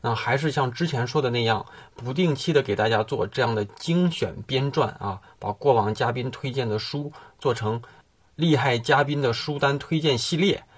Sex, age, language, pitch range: male, 20-39, Chinese, 110-135 Hz